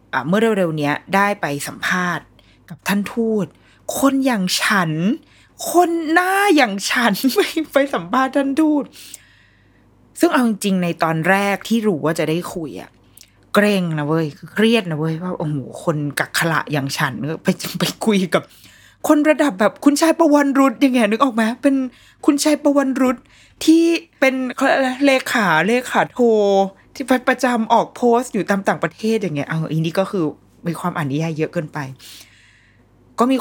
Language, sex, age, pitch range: Thai, female, 20-39, 155-240 Hz